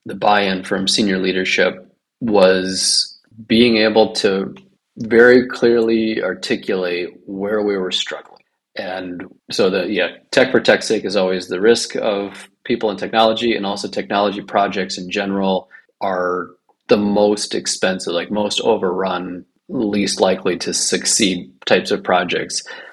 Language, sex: English, male